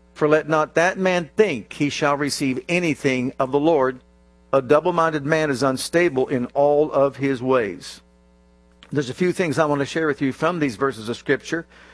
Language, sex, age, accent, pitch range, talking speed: English, male, 50-69, American, 125-160 Hz, 190 wpm